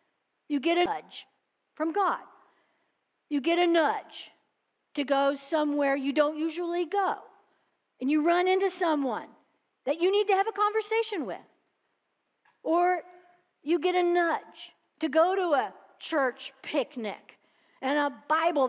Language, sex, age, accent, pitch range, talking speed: English, female, 50-69, American, 245-350 Hz, 140 wpm